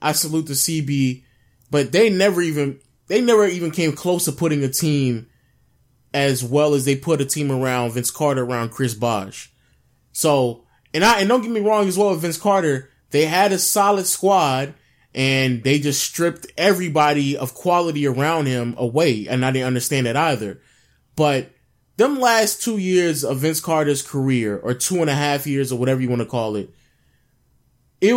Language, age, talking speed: English, 20-39, 185 wpm